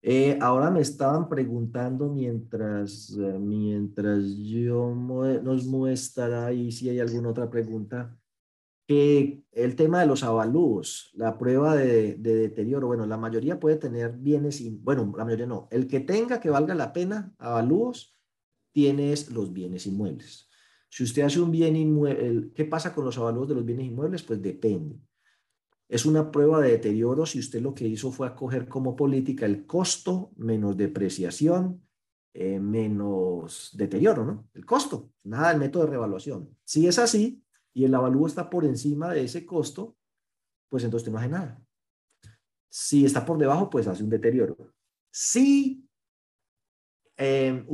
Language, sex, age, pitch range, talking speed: Spanish, male, 40-59, 115-150 Hz, 155 wpm